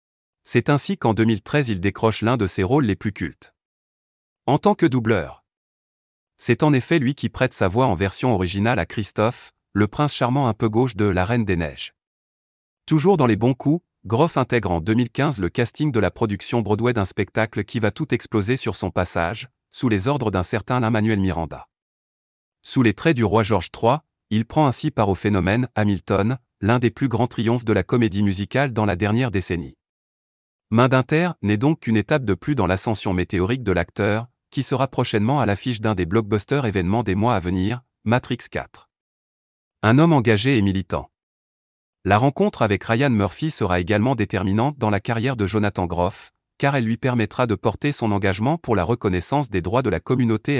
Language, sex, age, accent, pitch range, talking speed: French, male, 30-49, French, 100-125 Hz, 195 wpm